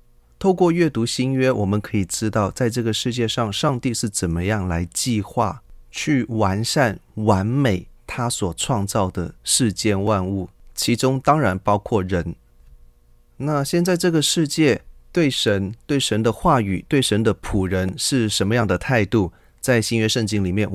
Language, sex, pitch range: Chinese, male, 90-120 Hz